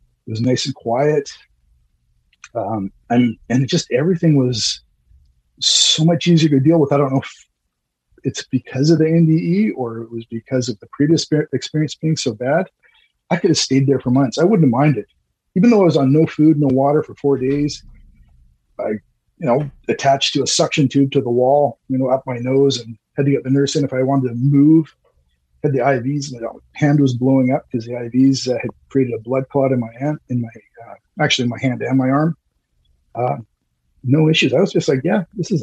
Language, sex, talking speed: English, male, 215 wpm